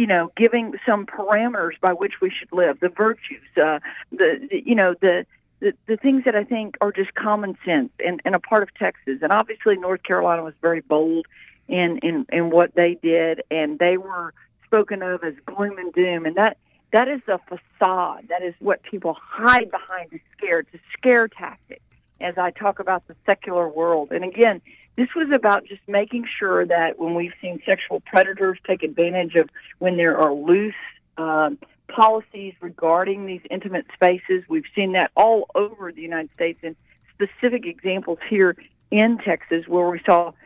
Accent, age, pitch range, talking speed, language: American, 50-69, 170-210 Hz, 180 wpm, English